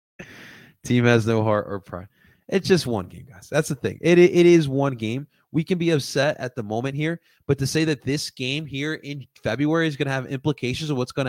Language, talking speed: English, 240 wpm